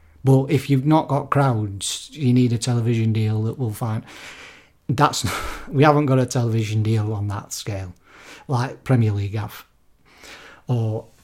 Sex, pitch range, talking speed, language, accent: male, 120-145 Hz, 160 wpm, English, British